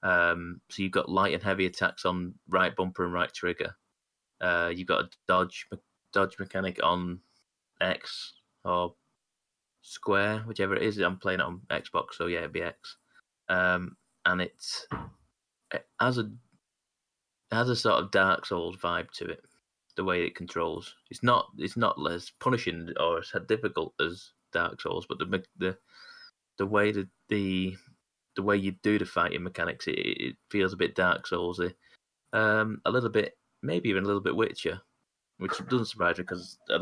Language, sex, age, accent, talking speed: English, male, 20-39, British, 175 wpm